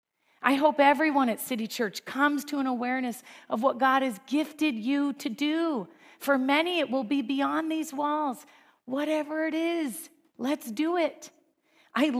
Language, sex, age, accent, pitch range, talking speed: English, female, 40-59, American, 235-310 Hz, 160 wpm